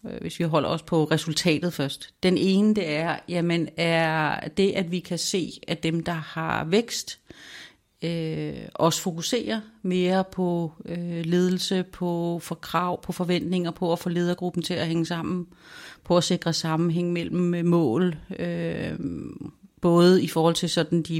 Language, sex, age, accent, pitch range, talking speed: Danish, female, 40-59, native, 170-195 Hz, 160 wpm